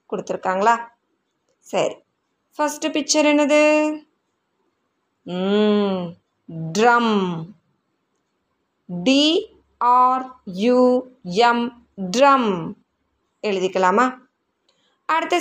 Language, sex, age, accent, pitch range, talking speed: Tamil, female, 20-39, native, 215-305 Hz, 40 wpm